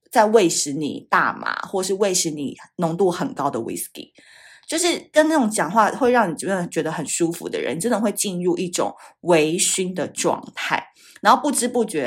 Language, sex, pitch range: Chinese, female, 165-275 Hz